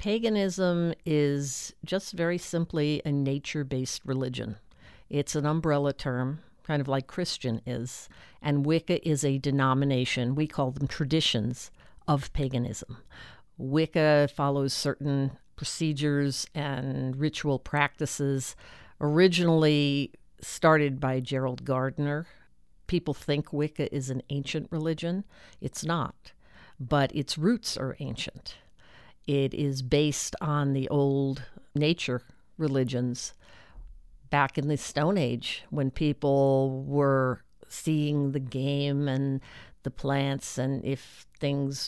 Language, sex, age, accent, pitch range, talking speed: English, female, 50-69, American, 130-150 Hz, 115 wpm